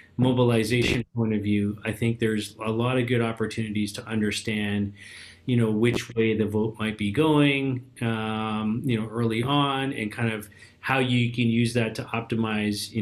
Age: 30-49